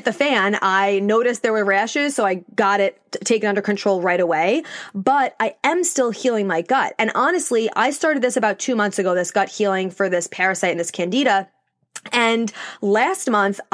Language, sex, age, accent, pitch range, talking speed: English, female, 20-39, American, 200-260 Hz, 190 wpm